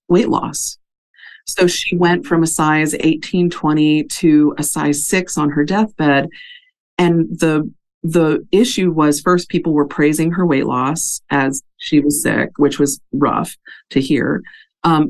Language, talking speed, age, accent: English, 155 wpm, 40-59, American